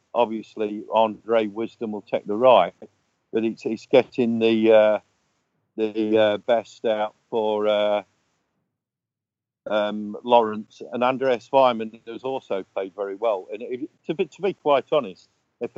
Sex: male